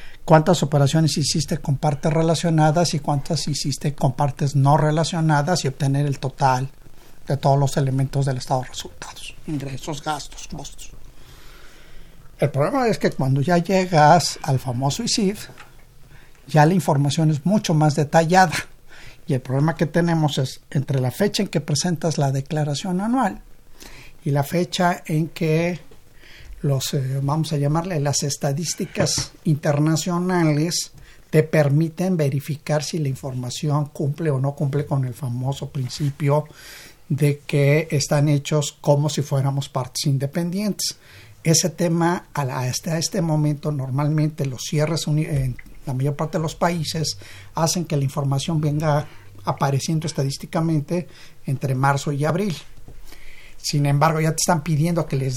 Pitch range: 140-165 Hz